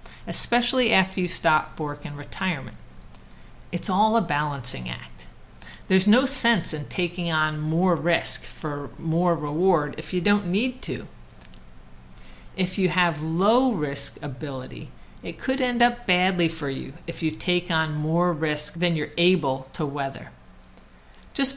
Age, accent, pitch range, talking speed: 50-69, American, 145-190 Hz, 145 wpm